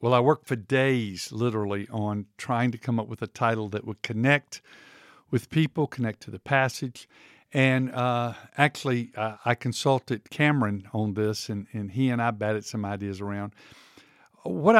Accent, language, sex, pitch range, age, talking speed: American, English, male, 115-145 Hz, 50-69, 170 wpm